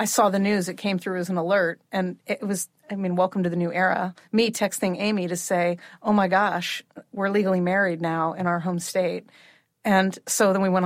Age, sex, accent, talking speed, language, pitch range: 40-59, female, American, 215 wpm, English, 180-210 Hz